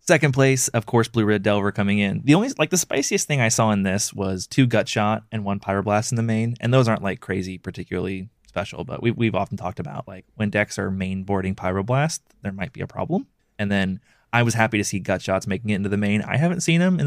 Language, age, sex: English, 20-39, male